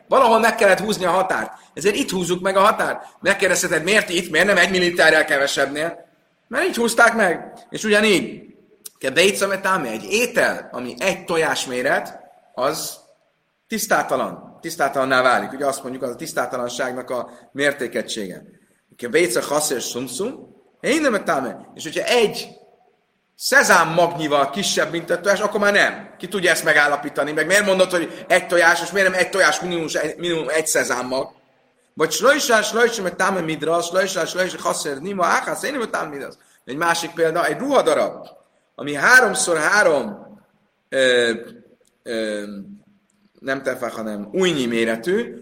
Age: 30-49